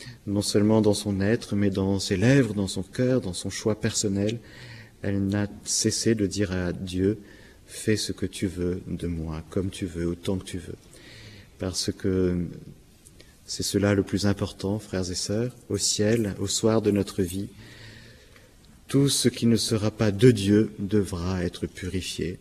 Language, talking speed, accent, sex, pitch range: French, 180 wpm, French, male, 95-110 Hz